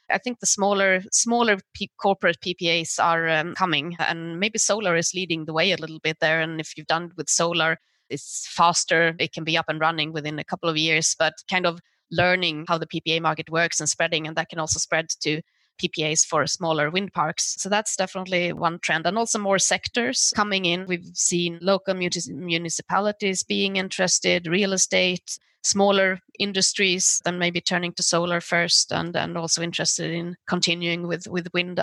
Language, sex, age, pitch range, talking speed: English, female, 20-39, 165-190 Hz, 190 wpm